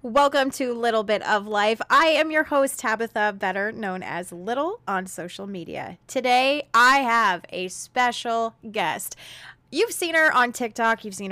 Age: 30-49